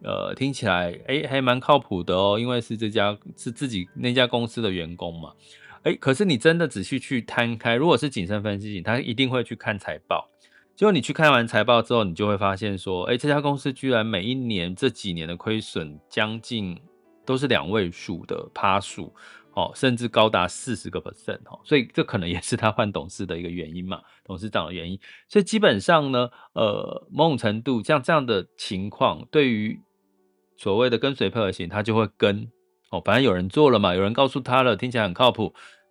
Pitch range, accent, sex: 100-140 Hz, native, male